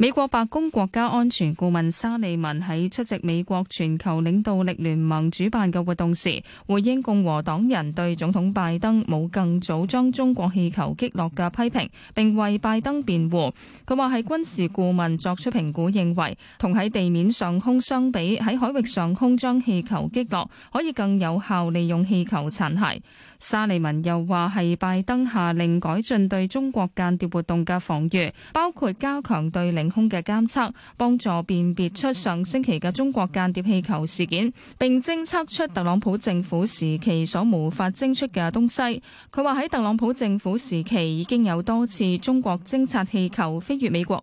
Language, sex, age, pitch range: Chinese, female, 20-39, 175-235 Hz